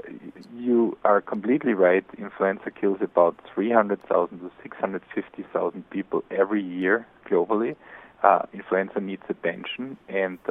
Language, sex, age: Korean, male, 40-59